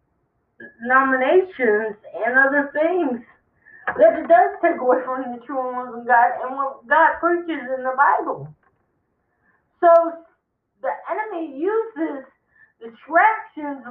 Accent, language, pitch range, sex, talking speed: American, English, 245-335 Hz, female, 115 wpm